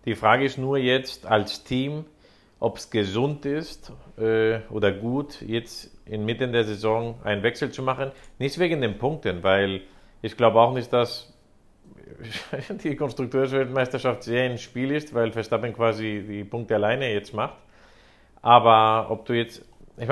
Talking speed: 160 wpm